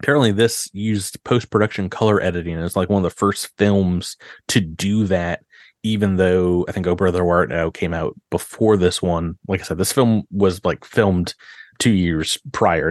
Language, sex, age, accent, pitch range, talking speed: English, male, 30-49, American, 95-120 Hz, 185 wpm